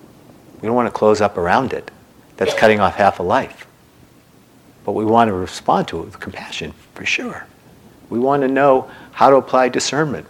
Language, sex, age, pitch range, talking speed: English, male, 50-69, 95-115 Hz, 190 wpm